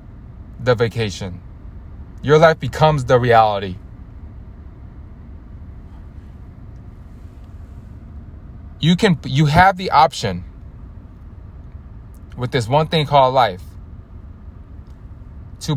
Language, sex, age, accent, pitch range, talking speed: English, male, 20-39, American, 90-130 Hz, 75 wpm